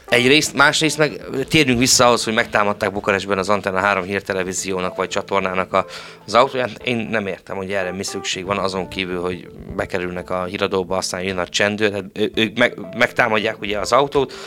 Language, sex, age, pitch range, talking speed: Hungarian, male, 30-49, 95-120 Hz, 175 wpm